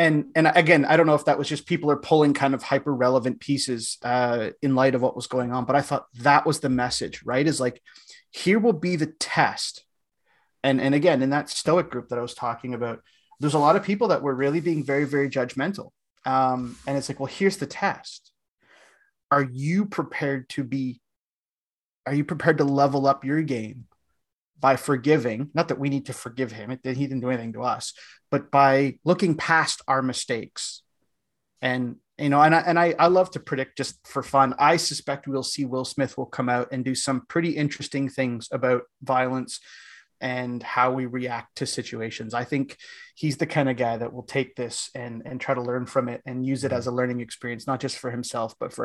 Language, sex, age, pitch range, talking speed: English, male, 30-49, 125-145 Hz, 215 wpm